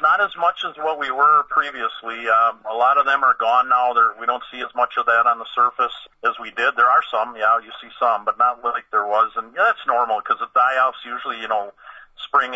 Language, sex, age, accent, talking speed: English, male, 40-59, American, 245 wpm